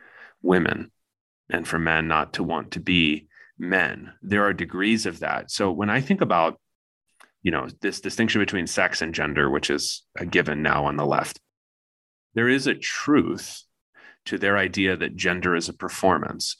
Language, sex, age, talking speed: English, male, 30-49, 175 wpm